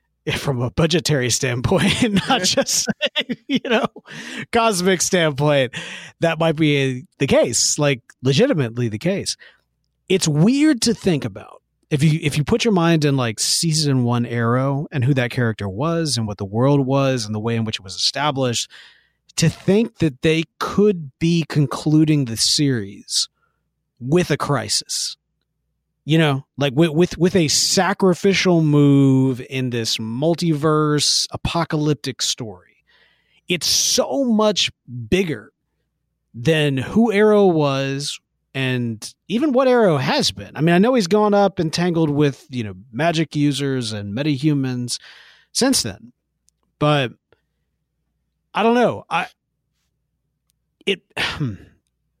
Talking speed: 135 wpm